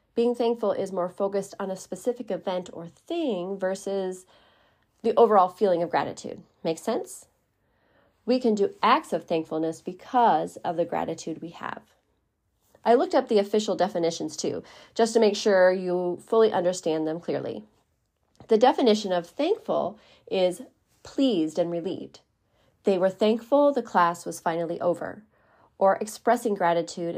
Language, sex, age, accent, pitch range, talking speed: English, female, 30-49, American, 175-230 Hz, 145 wpm